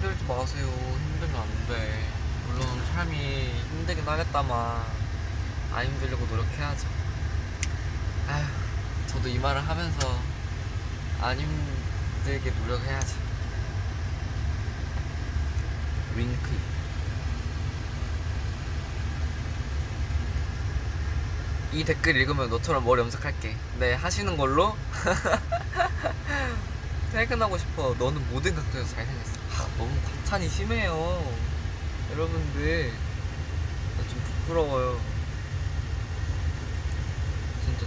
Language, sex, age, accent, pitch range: Korean, male, 20-39, native, 80-100 Hz